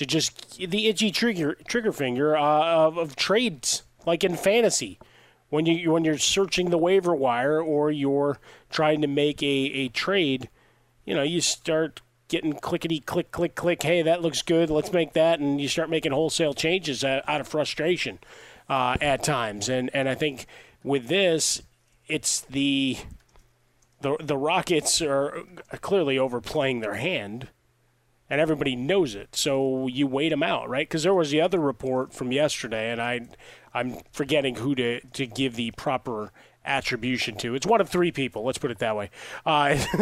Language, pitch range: English, 135-170 Hz